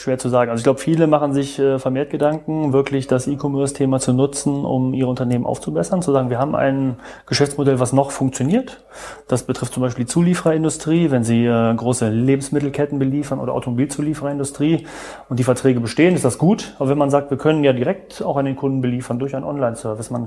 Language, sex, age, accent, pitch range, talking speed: German, male, 30-49, German, 125-145 Hz, 195 wpm